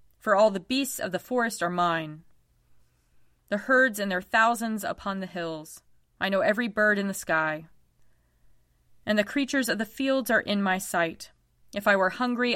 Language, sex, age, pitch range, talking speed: English, female, 30-49, 165-225 Hz, 180 wpm